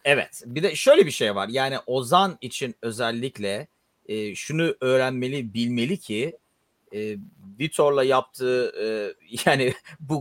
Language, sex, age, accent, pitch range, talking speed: Turkish, male, 40-59, native, 125-170 Hz, 130 wpm